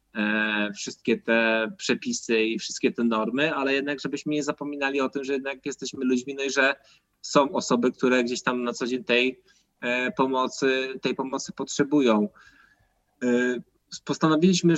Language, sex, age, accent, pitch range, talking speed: Polish, male, 20-39, native, 115-150 Hz, 140 wpm